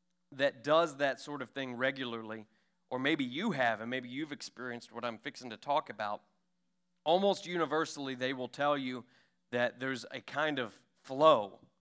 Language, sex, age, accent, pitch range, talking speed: English, male, 30-49, American, 125-165 Hz, 170 wpm